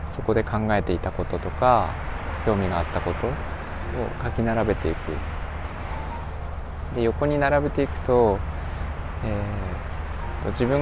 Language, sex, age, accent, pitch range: Japanese, male, 20-39, native, 75-100 Hz